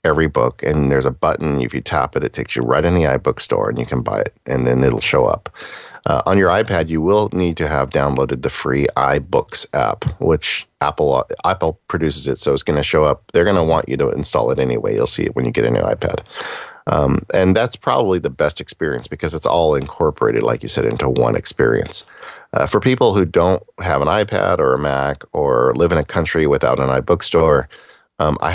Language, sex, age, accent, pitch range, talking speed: English, male, 40-59, American, 70-90 Hz, 230 wpm